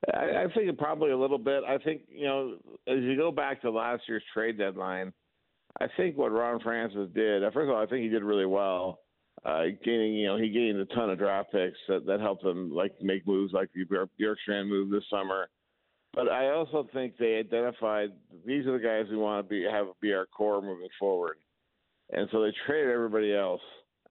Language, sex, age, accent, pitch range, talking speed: English, male, 50-69, American, 105-125 Hz, 215 wpm